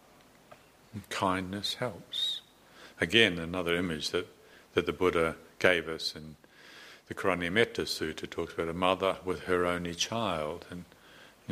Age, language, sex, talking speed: 60-79, English, male, 135 wpm